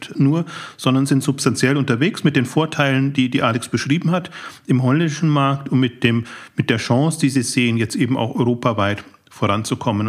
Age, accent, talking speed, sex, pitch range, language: 40-59, German, 180 wpm, male, 115-140 Hz, German